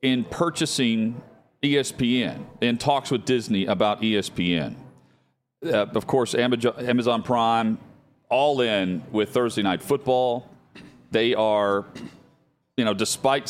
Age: 40-59